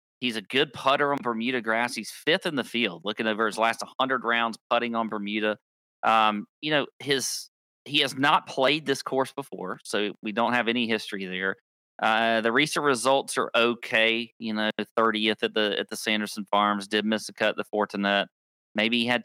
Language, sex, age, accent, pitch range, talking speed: English, male, 30-49, American, 105-135 Hz, 200 wpm